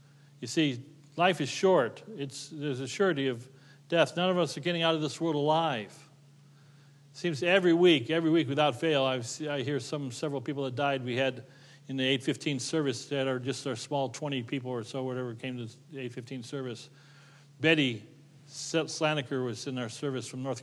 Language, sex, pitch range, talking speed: English, male, 135-155 Hz, 195 wpm